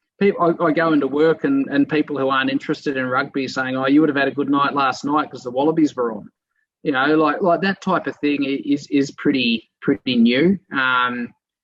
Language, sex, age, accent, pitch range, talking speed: English, male, 20-39, Australian, 125-160 Hz, 225 wpm